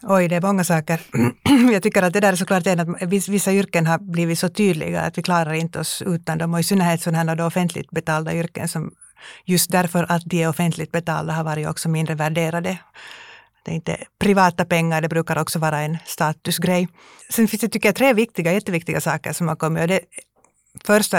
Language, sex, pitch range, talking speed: Swedish, female, 160-190 Hz, 210 wpm